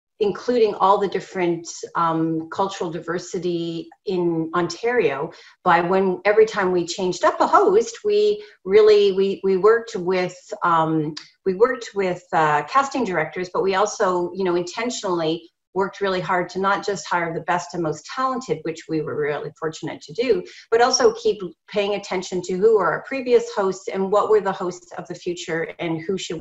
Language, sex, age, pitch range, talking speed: English, female, 40-59, 175-225 Hz, 175 wpm